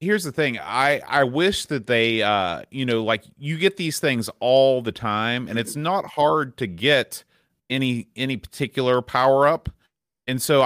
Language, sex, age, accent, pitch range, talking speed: English, male, 30-49, American, 110-140 Hz, 180 wpm